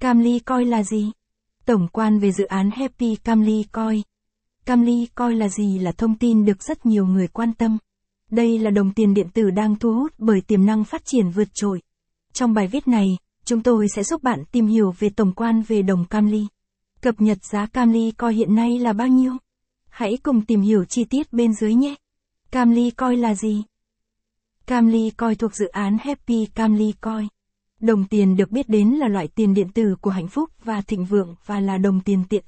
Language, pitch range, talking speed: Vietnamese, 205-235 Hz, 205 wpm